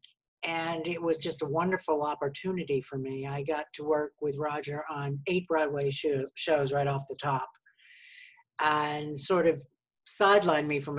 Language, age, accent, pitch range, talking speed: English, 60-79, American, 145-165 Hz, 160 wpm